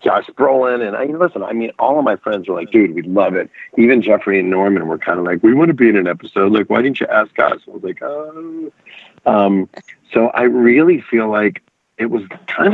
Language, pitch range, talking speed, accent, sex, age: English, 95-130 Hz, 240 wpm, American, male, 40-59